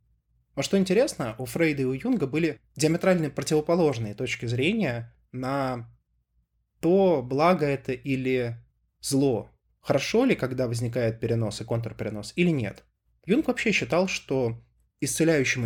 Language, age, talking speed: Russian, 20-39, 125 wpm